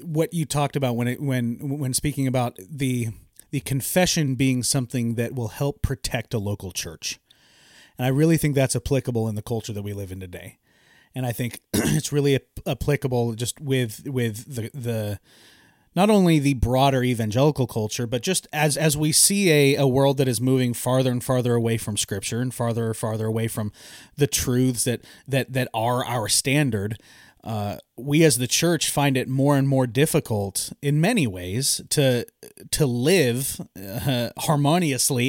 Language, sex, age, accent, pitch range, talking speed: English, male, 30-49, American, 115-145 Hz, 180 wpm